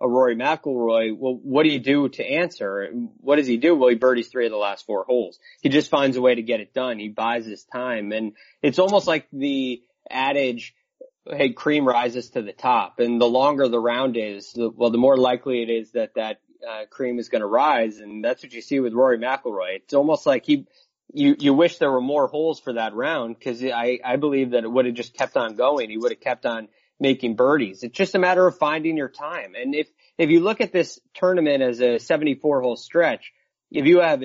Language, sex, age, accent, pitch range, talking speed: English, male, 30-49, American, 120-180 Hz, 235 wpm